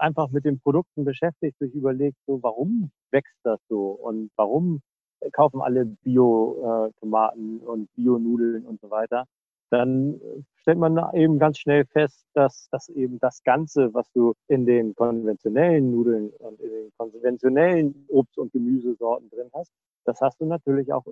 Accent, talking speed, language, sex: German, 155 wpm, German, male